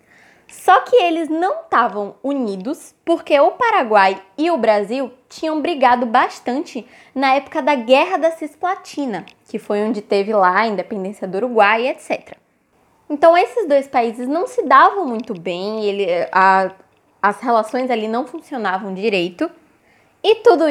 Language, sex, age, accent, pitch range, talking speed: Portuguese, female, 10-29, Brazilian, 210-320 Hz, 140 wpm